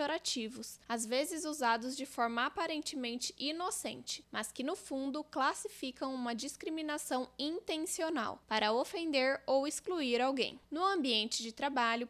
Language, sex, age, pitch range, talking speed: Portuguese, female, 10-29, 245-310 Hz, 125 wpm